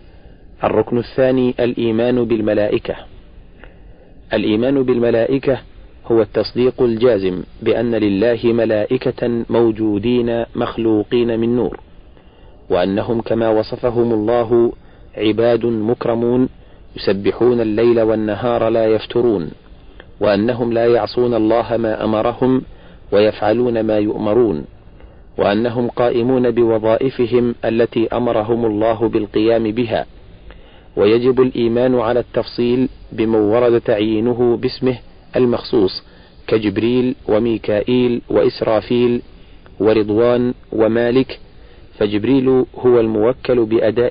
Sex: male